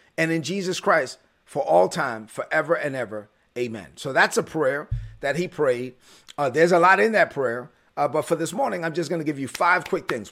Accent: American